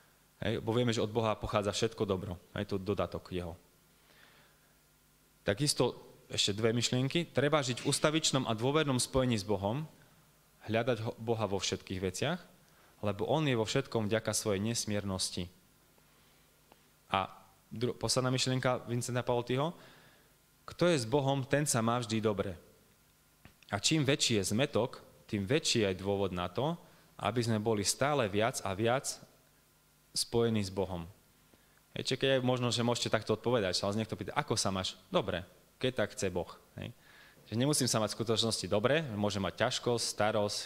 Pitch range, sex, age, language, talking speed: 100-125 Hz, male, 20-39, Slovak, 155 wpm